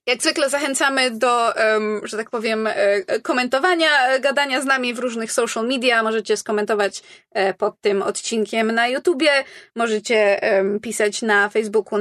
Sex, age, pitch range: female, 20-39, 210-250 Hz